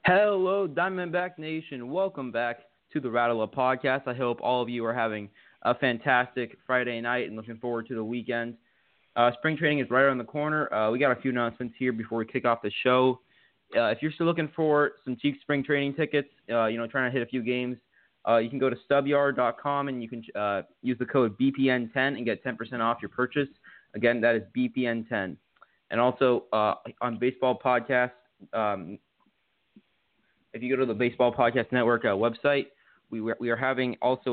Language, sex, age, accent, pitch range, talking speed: English, male, 20-39, American, 115-130 Hz, 200 wpm